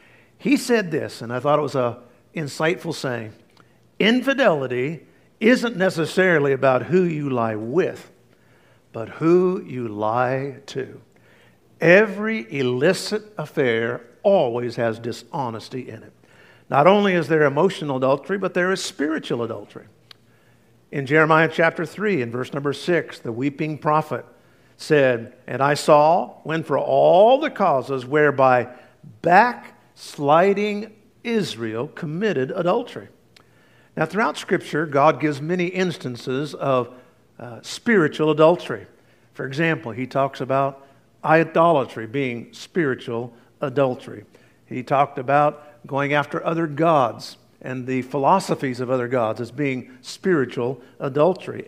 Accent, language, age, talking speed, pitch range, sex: American, English, 50-69, 125 wpm, 125-170 Hz, male